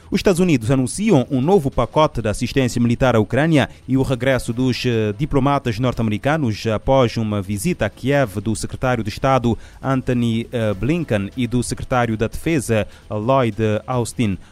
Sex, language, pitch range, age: male, Portuguese, 110-135 Hz, 30-49